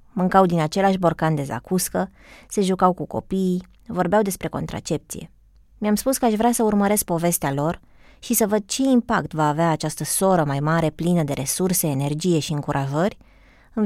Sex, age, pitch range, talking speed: female, 20-39, 155-210 Hz, 175 wpm